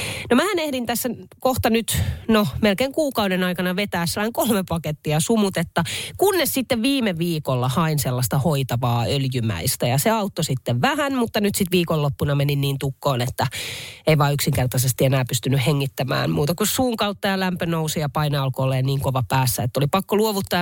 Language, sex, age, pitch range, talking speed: Finnish, female, 30-49, 140-220 Hz, 165 wpm